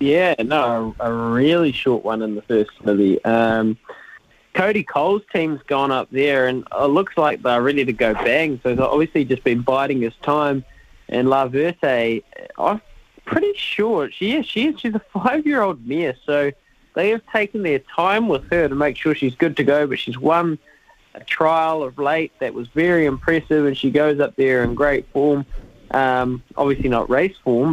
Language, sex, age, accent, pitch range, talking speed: English, male, 20-39, Australian, 135-175 Hz, 190 wpm